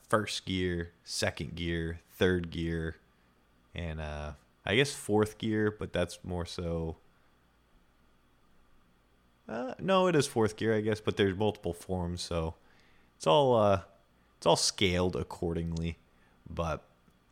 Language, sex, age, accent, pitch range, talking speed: English, male, 30-49, American, 75-95 Hz, 130 wpm